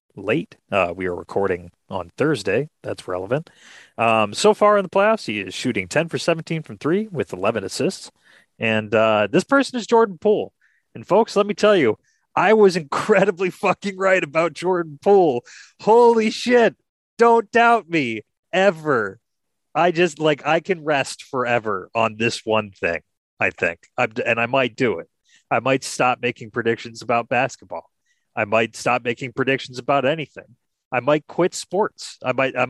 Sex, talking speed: male, 170 wpm